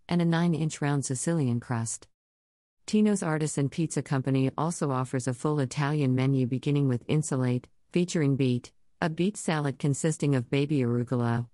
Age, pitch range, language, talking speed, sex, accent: 50-69, 130-175 Hz, English, 145 wpm, female, American